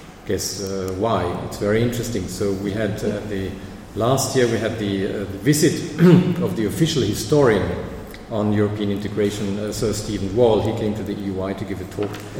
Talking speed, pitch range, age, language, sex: 190 wpm, 100-120 Hz, 50-69, English, male